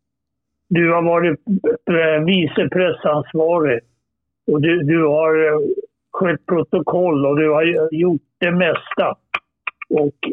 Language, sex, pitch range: Swedish, male, 155-180 Hz